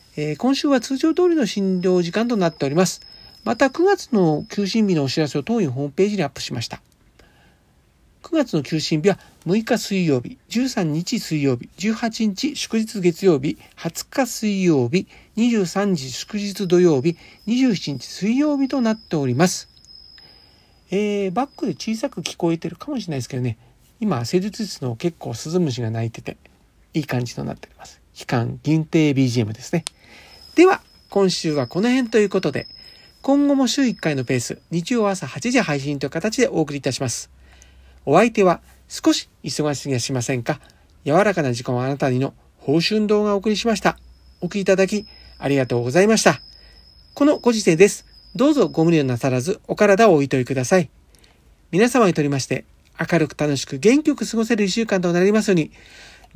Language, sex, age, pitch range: Japanese, male, 50-69, 145-225 Hz